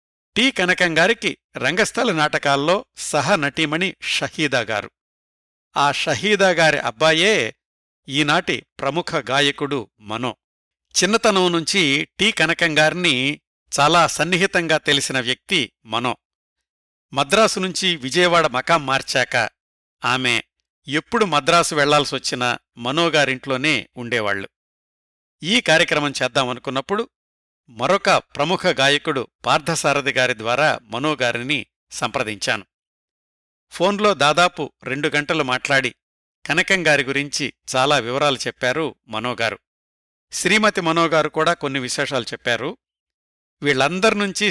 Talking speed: 80 wpm